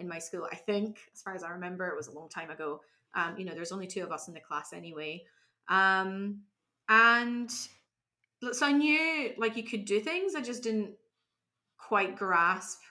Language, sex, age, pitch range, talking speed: English, female, 20-39, 185-235 Hz, 200 wpm